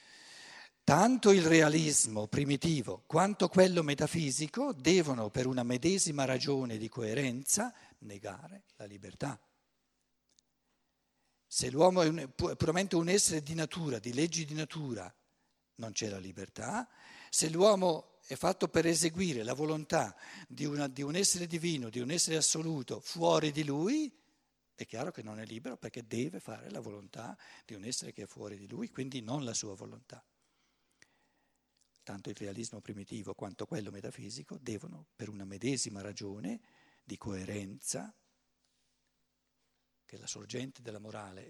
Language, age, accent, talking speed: Italian, 60-79, native, 140 wpm